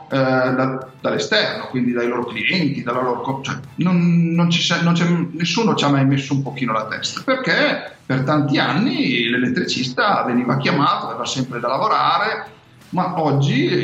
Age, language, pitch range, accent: 50-69, Italian, 130-165 Hz, native